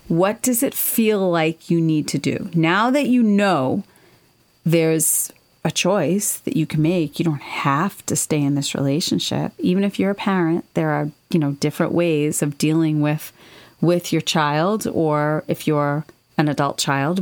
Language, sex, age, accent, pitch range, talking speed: English, female, 40-59, American, 150-180 Hz, 180 wpm